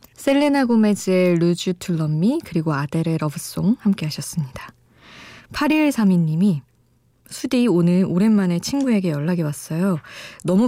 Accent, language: native, Korean